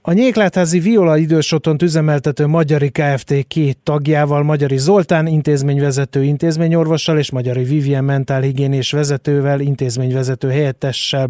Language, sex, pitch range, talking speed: Hungarian, male, 135-155 Hz, 105 wpm